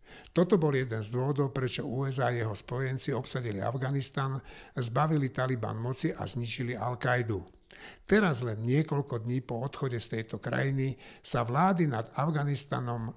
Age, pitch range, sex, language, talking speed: 60-79, 120-150 Hz, male, Slovak, 140 wpm